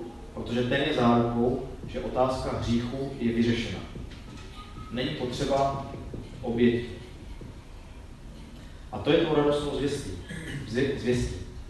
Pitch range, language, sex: 95-130 Hz, Czech, male